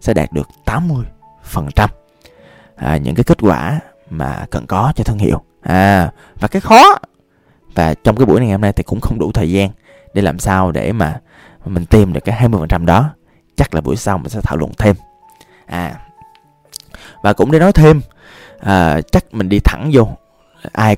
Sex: male